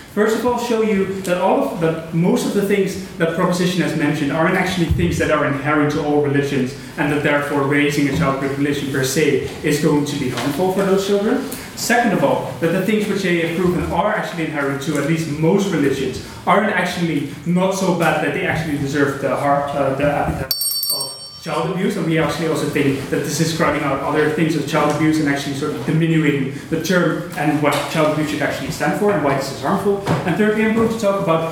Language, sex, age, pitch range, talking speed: English, male, 20-39, 145-175 Hz, 225 wpm